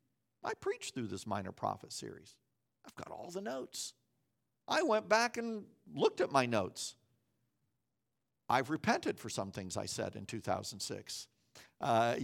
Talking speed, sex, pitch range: 145 wpm, male, 145-220 Hz